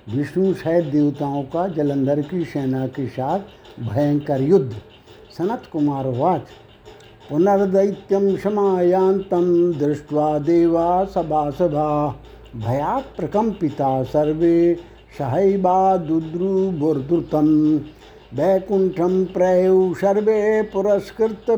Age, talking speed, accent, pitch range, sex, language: 60-79, 70 wpm, native, 145-195 Hz, male, Hindi